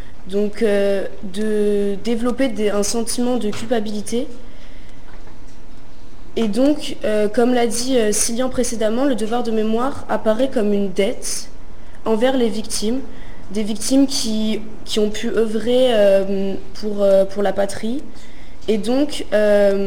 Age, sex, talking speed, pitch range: 20-39, female, 135 wpm, 205-240 Hz